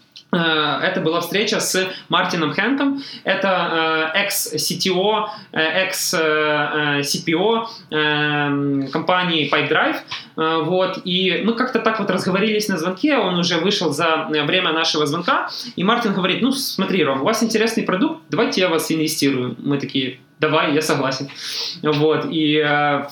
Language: Russian